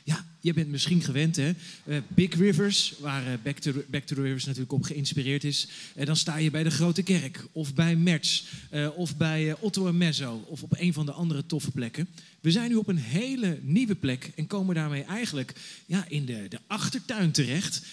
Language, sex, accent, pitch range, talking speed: Dutch, male, Dutch, 145-185 Hz, 215 wpm